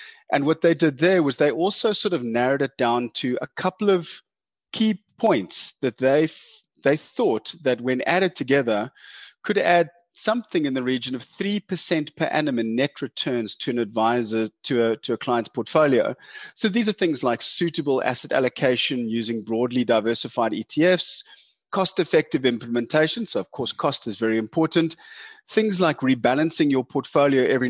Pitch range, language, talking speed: 120-165 Hz, English, 170 wpm